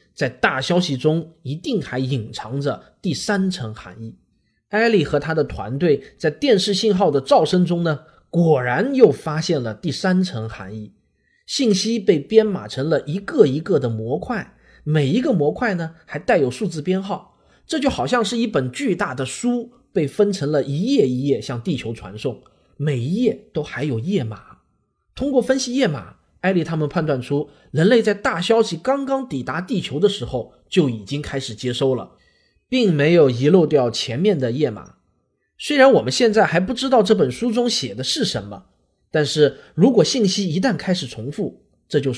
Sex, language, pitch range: male, Chinese, 130-205 Hz